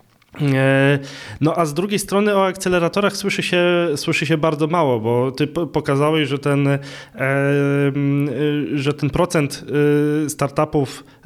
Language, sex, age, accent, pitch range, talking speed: Polish, male, 20-39, native, 135-155 Hz, 105 wpm